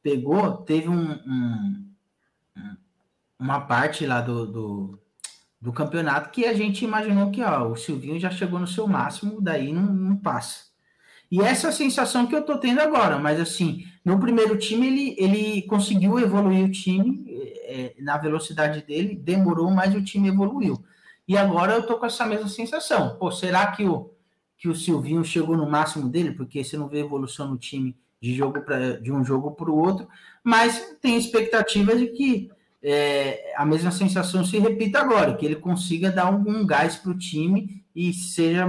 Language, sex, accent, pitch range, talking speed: Portuguese, male, Brazilian, 145-200 Hz, 175 wpm